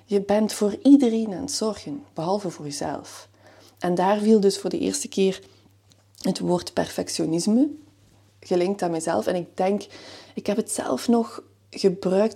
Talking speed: 160 wpm